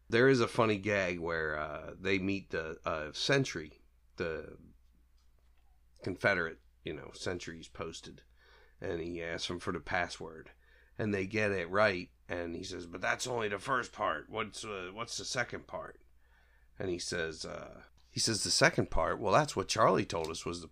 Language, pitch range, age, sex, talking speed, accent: English, 80-100 Hz, 40-59, male, 180 wpm, American